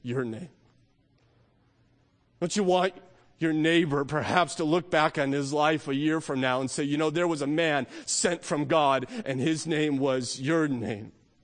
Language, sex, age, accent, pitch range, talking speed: English, male, 40-59, American, 155-220 Hz, 185 wpm